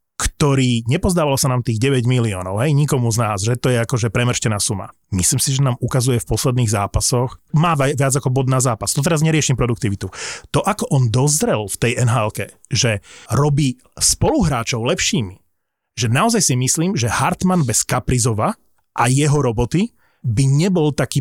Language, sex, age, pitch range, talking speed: Slovak, male, 30-49, 120-150 Hz, 170 wpm